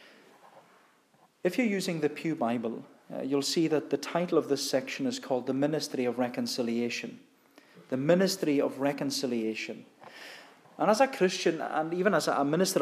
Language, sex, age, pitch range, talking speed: English, male, 40-59, 145-210 Hz, 160 wpm